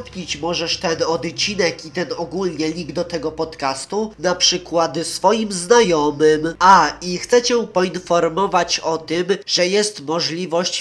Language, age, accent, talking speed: Polish, 20-39, native, 135 wpm